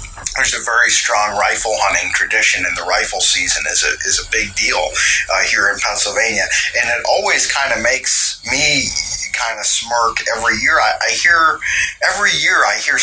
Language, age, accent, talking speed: English, 30-49, American, 185 wpm